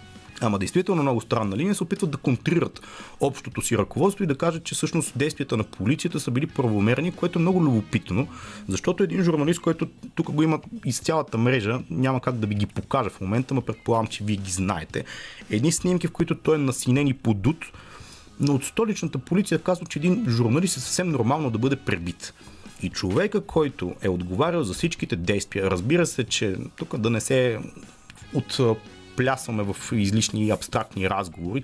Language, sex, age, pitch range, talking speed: Bulgarian, male, 30-49, 110-155 Hz, 180 wpm